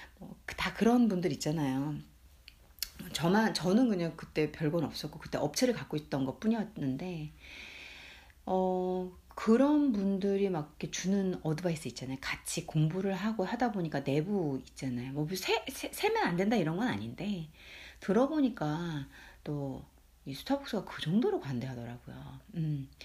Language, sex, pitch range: Korean, female, 140-215 Hz